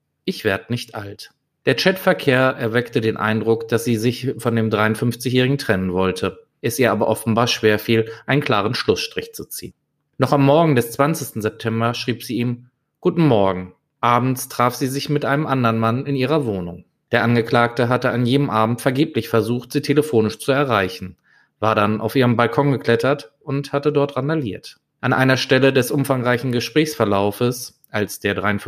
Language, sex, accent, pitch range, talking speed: German, male, German, 110-140 Hz, 165 wpm